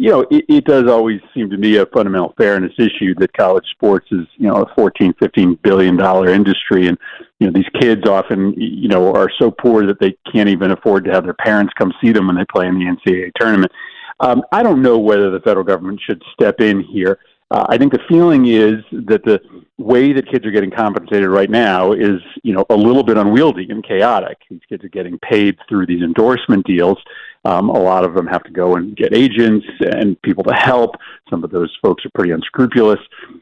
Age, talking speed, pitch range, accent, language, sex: 50-69, 220 wpm, 95-135 Hz, American, English, male